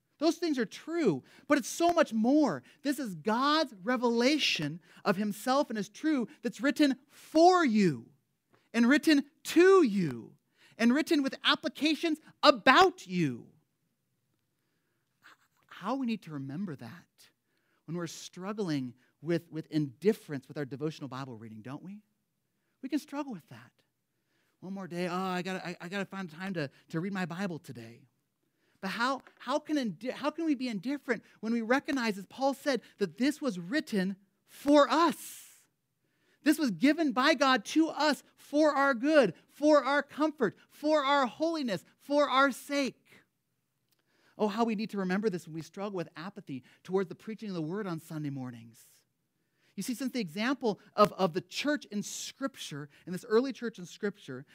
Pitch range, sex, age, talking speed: 175-280 Hz, male, 40-59, 165 wpm